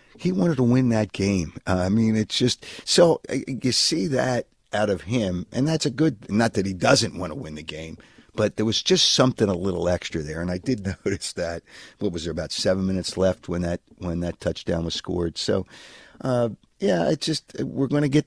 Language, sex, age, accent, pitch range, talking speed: English, male, 50-69, American, 90-125 Hz, 235 wpm